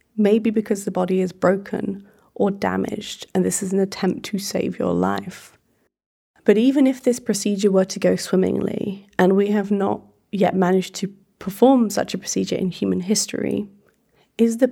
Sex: female